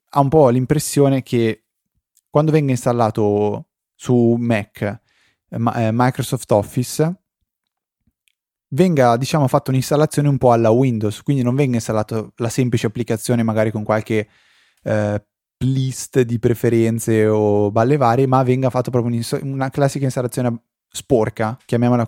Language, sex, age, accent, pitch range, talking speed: Italian, male, 20-39, native, 110-130 Hz, 135 wpm